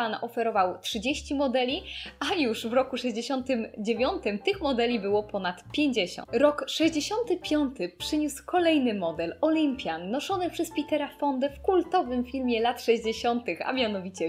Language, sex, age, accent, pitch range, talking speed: Polish, female, 10-29, native, 235-320 Hz, 125 wpm